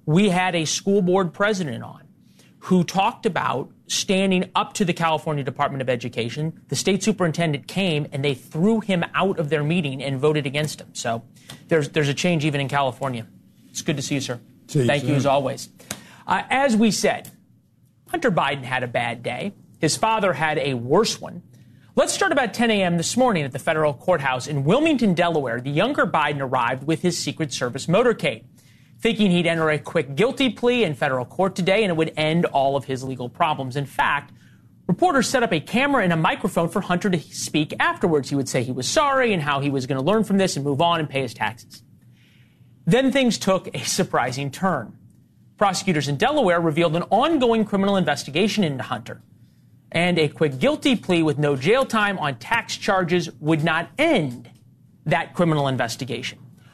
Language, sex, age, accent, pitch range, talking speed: English, male, 30-49, American, 140-195 Hz, 190 wpm